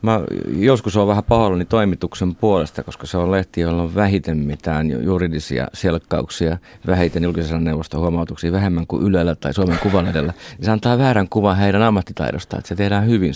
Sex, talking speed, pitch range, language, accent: male, 170 wpm, 80-95 Hz, Finnish, native